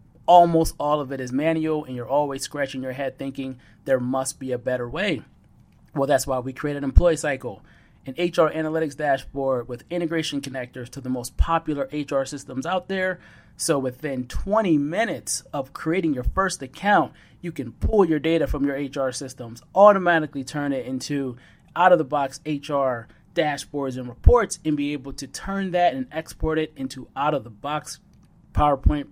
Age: 30-49